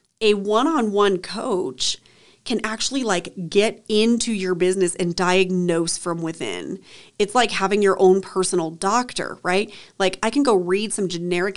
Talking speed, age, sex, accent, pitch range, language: 150 wpm, 30-49, female, American, 180-220 Hz, English